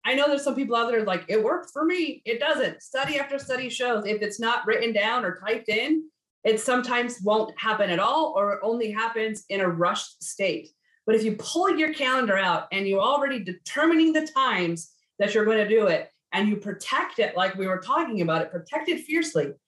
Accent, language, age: American, English, 30-49